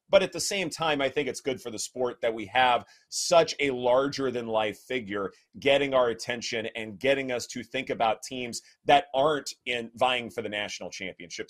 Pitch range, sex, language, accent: 120-165 Hz, male, English, American